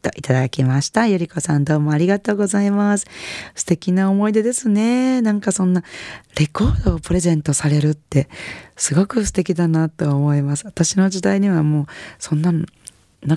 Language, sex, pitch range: Japanese, female, 145-205 Hz